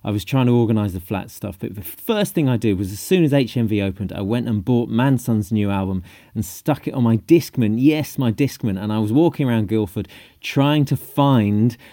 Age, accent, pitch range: 30-49, British, 110-145 Hz